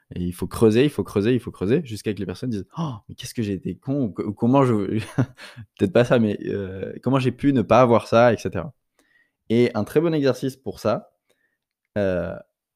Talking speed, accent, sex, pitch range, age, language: 235 wpm, French, male, 110-140 Hz, 20-39, French